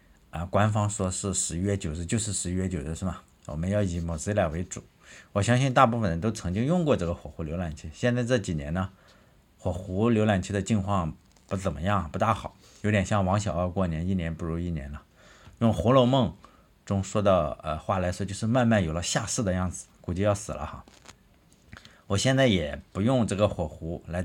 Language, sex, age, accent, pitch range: Chinese, male, 50-69, native, 85-105 Hz